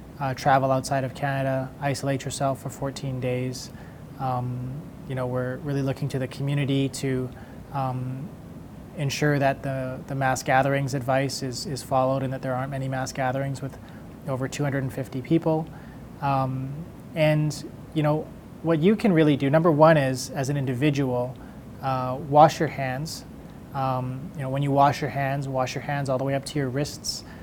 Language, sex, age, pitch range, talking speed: English, male, 20-39, 130-145 Hz, 175 wpm